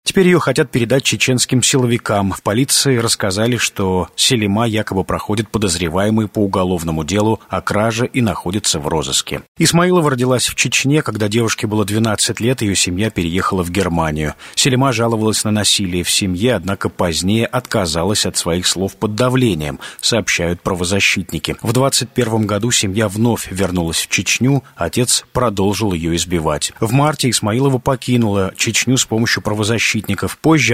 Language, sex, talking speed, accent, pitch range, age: Russian, male, 145 wpm, native, 95-125 Hz, 30-49